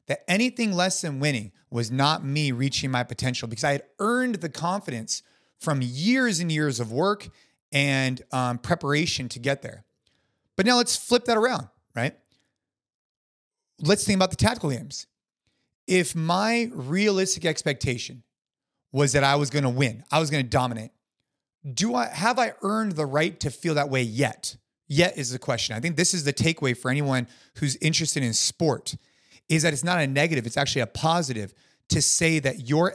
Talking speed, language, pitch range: 180 wpm, English, 130-170 Hz